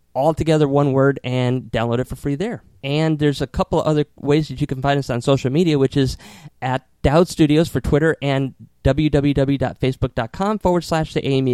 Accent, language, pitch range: American, English, 125-155 Hz